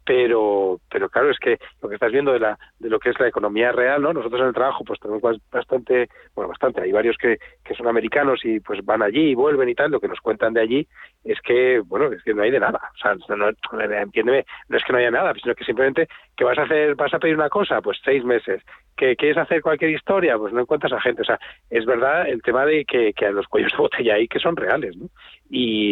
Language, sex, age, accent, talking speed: Spanish, male, 40-59, Spanish, 265 wpm